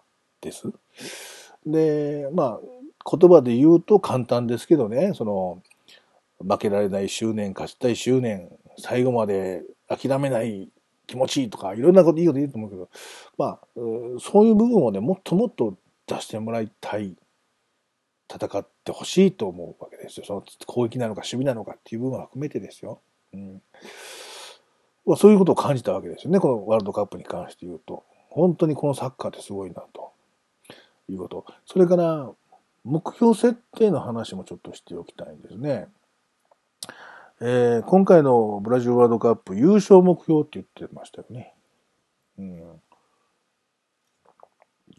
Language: Japanese